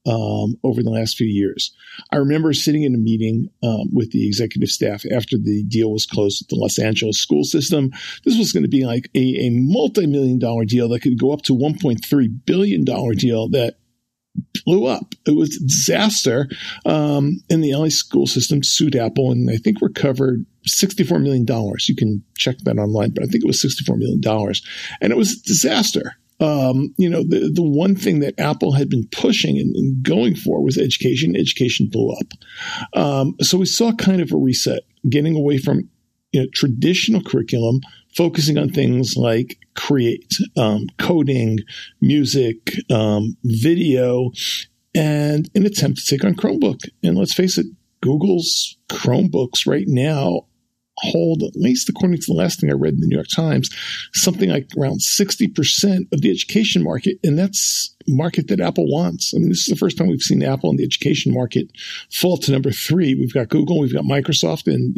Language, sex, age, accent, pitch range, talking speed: English, male, 50-69, American, 115-165 Hz, 190 wpm